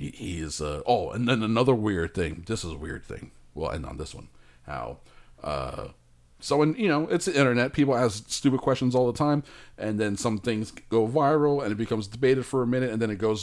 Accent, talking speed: American, 230 wpm